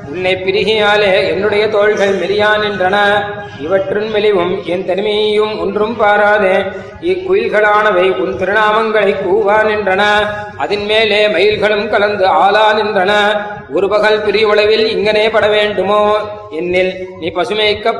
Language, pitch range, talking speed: Tamil, 200-220 Hz, 90 wpm